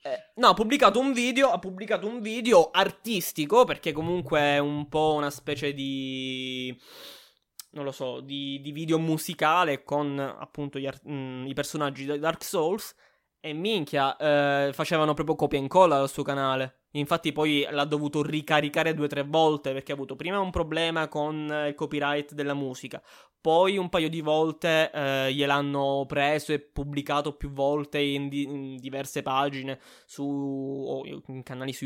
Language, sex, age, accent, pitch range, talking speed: Italian, male, 20-39, native, 140-165 Hz, 165 wpm